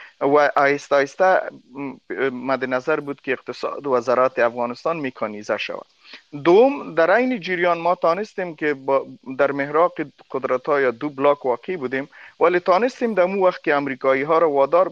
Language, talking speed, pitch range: Persian, 155 wpm, 125-165 Hz